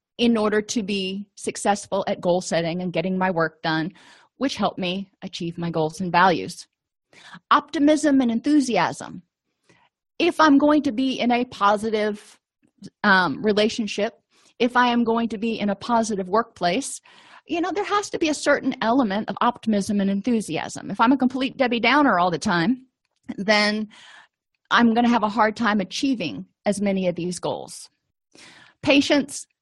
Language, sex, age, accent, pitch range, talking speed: English, female, 30-49, American, 200-255 Hz, 165 wpm